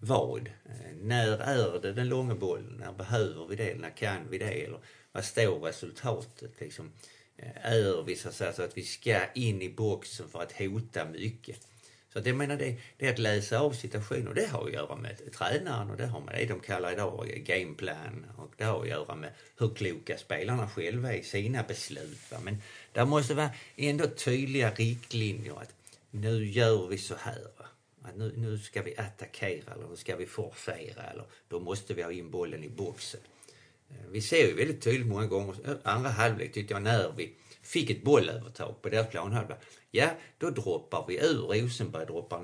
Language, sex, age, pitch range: Swedish, male, 50-69, 110-125 Hz